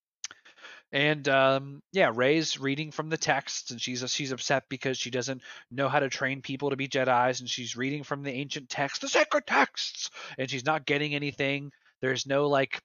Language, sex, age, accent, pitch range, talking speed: English, male, 30-49, American, 125-155 Hz, 195 wpm